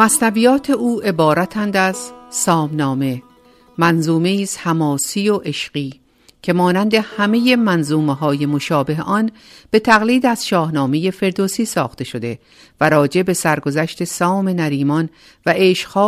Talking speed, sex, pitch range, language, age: 120 wpm, female, 150-195 Hz, Persian, 50-69